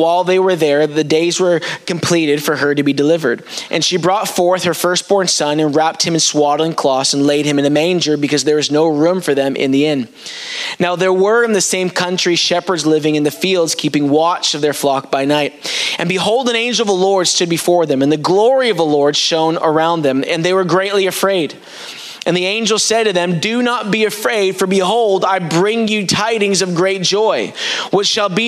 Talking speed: 225 wpm